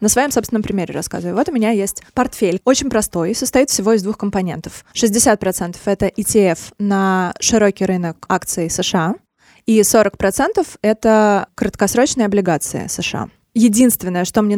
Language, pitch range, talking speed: Russian, 190-230 Hz, 140 wpm